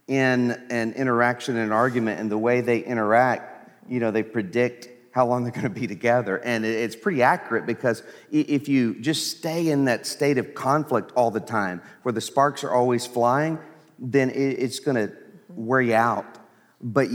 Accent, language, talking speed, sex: American, English, 175 wpm, male